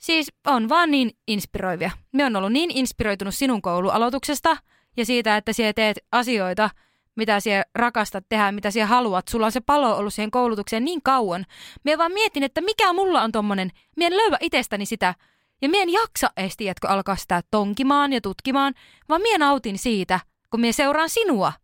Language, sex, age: Finnish, female, 20-39